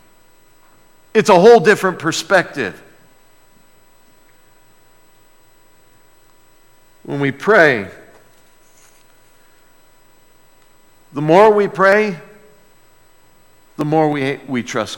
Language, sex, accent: English, male, American